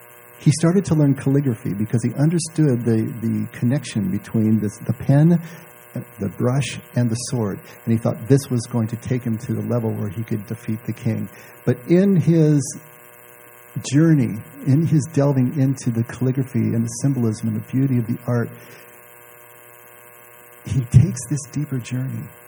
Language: English